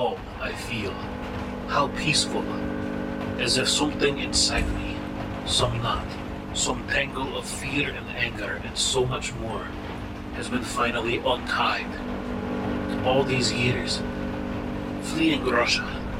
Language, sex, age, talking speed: English, male, 40-59, 115 wpm